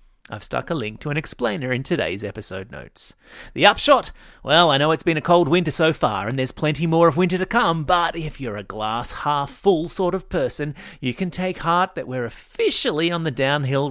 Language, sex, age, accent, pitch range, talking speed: English, male, 30-49, Australian, 125-175 Hz, 210 wpm